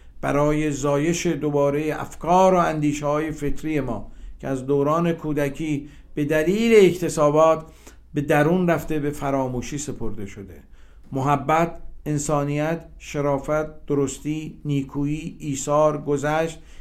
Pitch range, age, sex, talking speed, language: 130-160 Hz, 50-69, male, 105 wpm, Persian